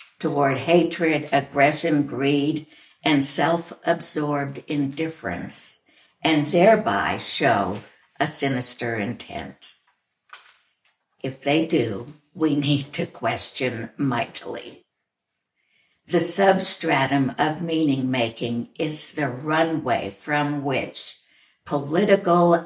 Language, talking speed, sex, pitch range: English, 80 wpm, female, 140-170 Hz